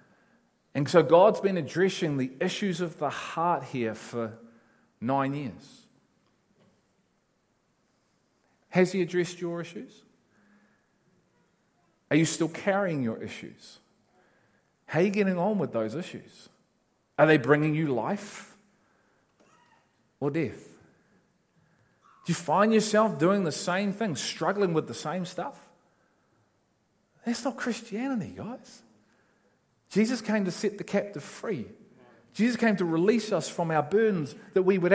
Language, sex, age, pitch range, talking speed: English, male, 40-59, 170-220 Hz, 130 wpm